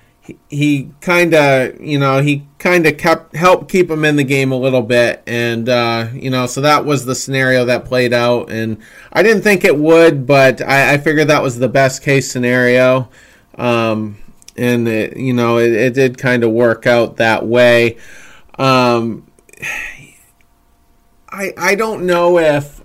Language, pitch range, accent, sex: English, 125-155 Hz, American, male